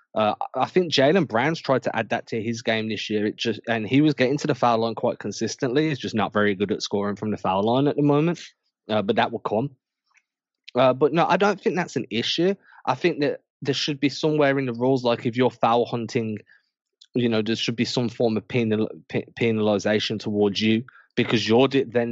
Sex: male